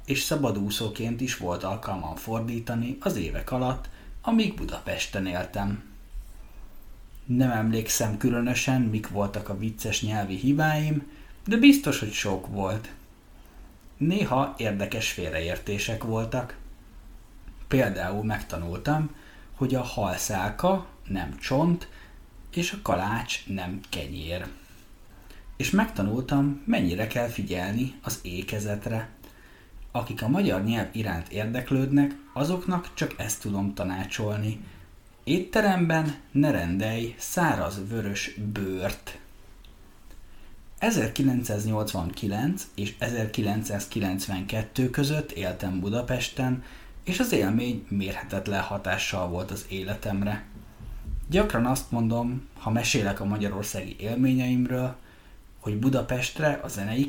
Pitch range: 100-130 Hz